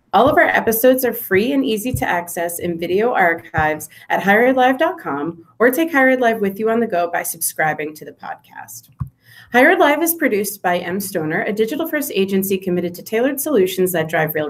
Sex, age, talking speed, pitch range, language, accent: female, 30-49, 190 wpm, 175-245 Hz, English, American